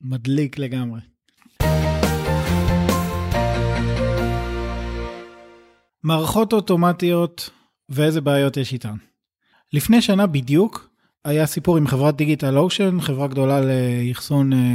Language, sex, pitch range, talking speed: Hebrew, male, 130-165 Hz, 80 wpm